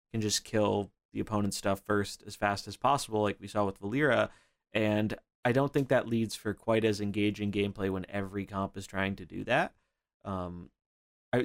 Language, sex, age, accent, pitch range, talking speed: English, male, 20-39, American, 100-125 Hz, 190 wpm